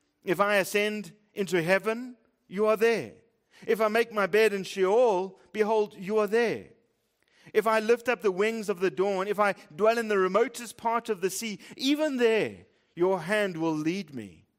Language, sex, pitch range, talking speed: English, male, 155-205 Hz, 185 wpm